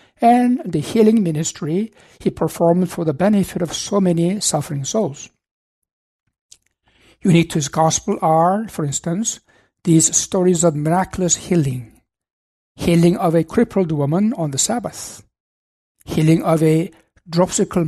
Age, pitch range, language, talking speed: 60-79, 160-190 Hz, English, 130 wpm